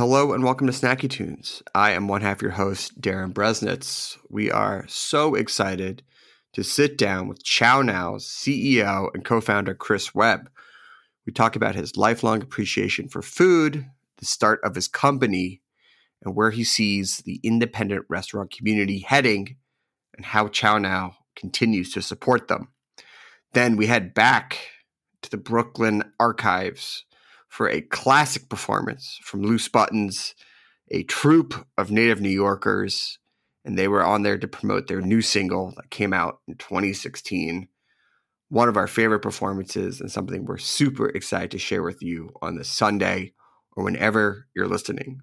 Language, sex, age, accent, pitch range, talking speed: English, male, 30-49, American, 100-130 Hz, 155 wpm